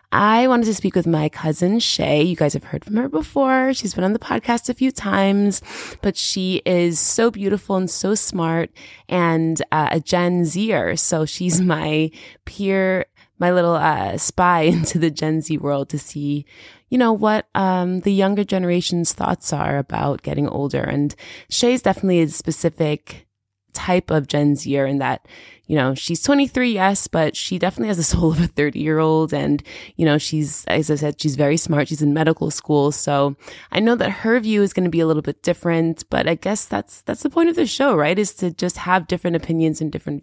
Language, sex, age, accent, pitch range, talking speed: English, female, 20-39, American, 155-205 Hz, 205 wpm